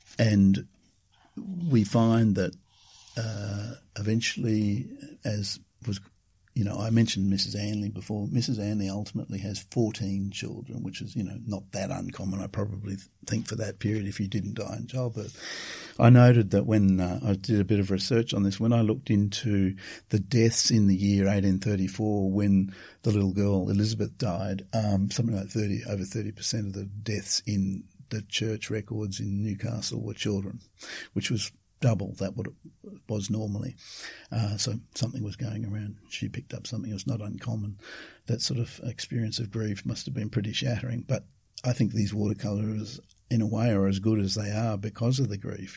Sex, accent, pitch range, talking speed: male, Australian, 100-115 Hz, 180 wpm